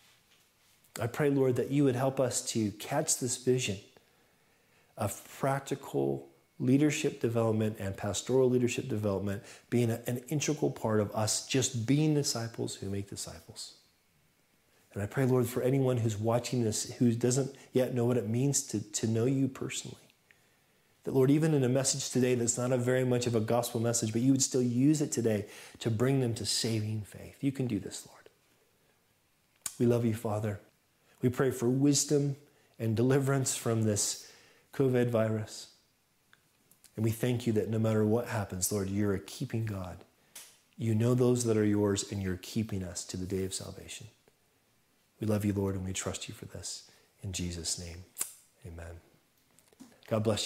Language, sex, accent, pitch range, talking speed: English, male, American, 105-130 Hz, 175 wpm